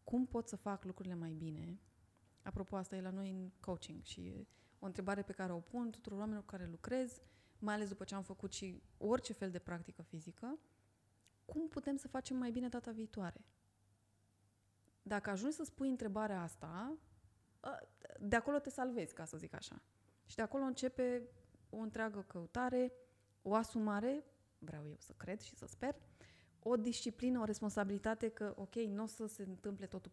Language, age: Romanian, 20-39